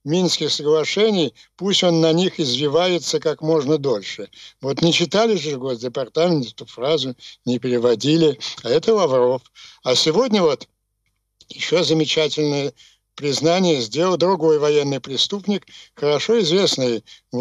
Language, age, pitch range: Ukrainian, 60-79, 140-175 Hz